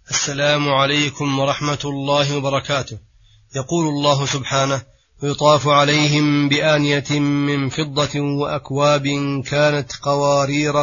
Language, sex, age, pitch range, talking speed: Arabic, male, 30-49, 140-155 Hz, 90 wpm